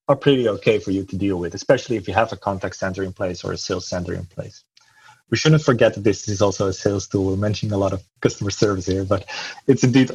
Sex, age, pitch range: male, 30-49, 100-120 Hz